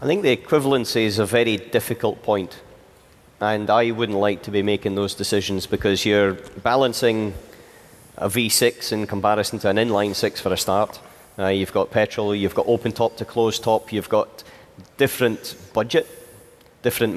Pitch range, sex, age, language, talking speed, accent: 105-120 Hz, male, 30-49, English, 170 wpm, British